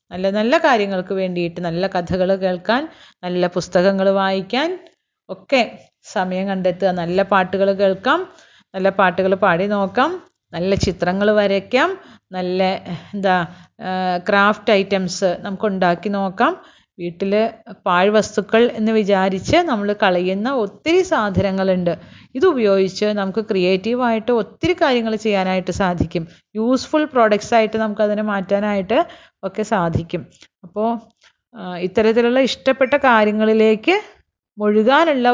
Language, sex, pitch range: Malayalam, female, 185-230 Hz